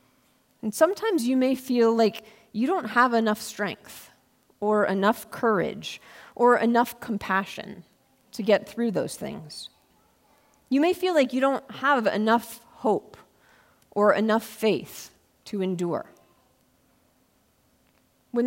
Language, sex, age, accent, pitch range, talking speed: English, female, 40-59, American, 200-250 Hz, 120 wpm